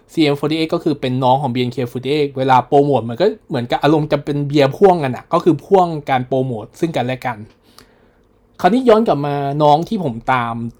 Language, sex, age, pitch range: Thai, male, 20-39, 125-155 Hz